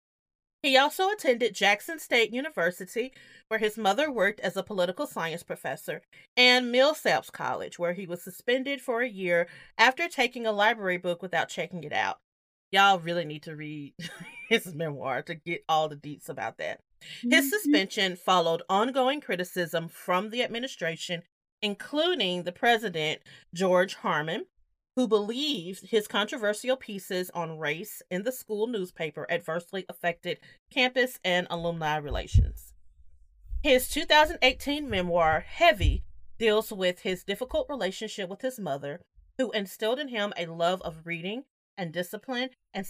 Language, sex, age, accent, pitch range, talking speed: English, female, 30-49, American, 170-240 Hz, 140 wpm